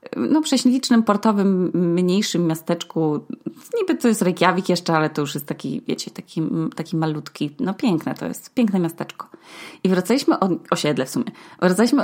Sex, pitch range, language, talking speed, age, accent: female, 165-225 Hz, Polish, 165 wpm, 20-39, native